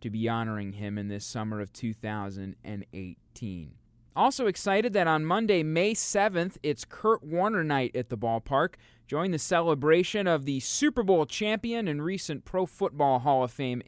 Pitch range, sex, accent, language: 125-165 Hz, male, American, English